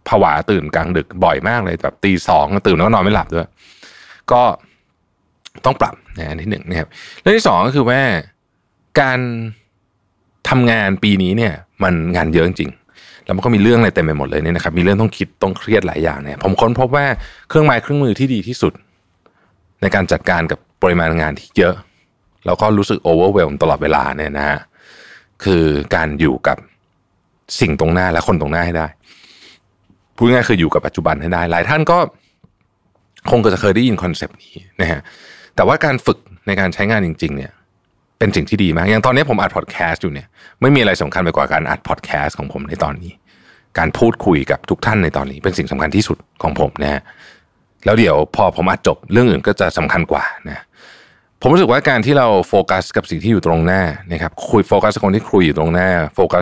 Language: Thai